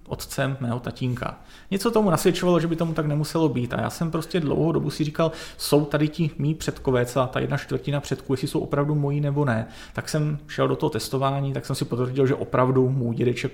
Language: Czech